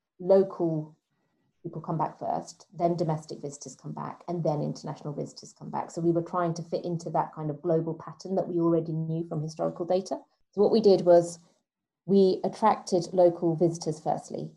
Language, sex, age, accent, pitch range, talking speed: English, female, 30-49, British, 160-175 Hz, 185 wpm